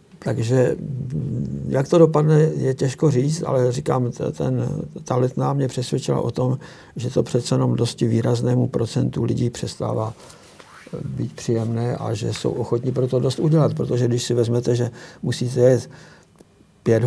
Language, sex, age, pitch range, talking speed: Slovak, male, 60-79, 120-140 Hz, 150 wpm